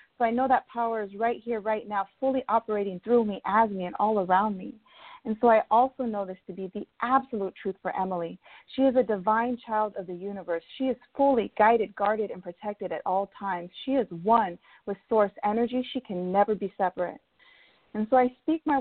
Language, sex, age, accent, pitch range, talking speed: English, female, 30-49, American, 200-255 Hz, 215 wpm